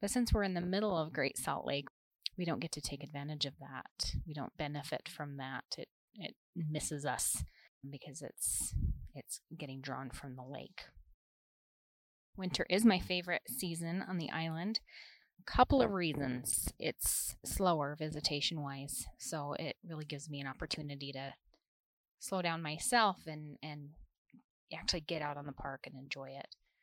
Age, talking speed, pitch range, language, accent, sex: 30-49, 160 wpm, 145-185 Hz, English, American, female